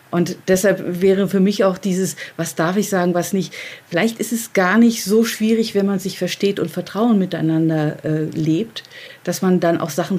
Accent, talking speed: German, 200 wpm